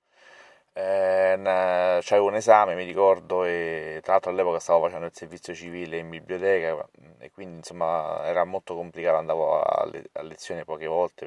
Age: 30-49